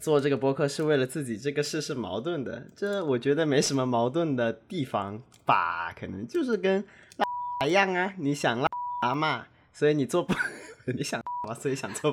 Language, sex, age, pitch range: Chinese, male, 20-39, 115-150 Hz